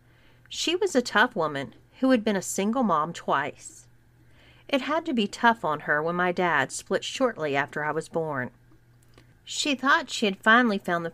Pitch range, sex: 140-220 Hz, female